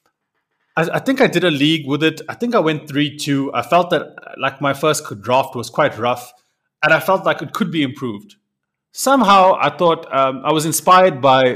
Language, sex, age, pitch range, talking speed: English, male, 30-49, 130-175 Hz, 200 wpm